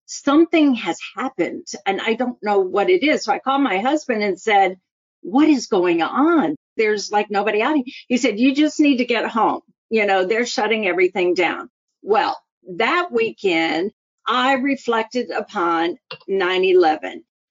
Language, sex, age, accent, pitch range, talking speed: English, female, 50-69, American, 200-285 Hz, 160 wpm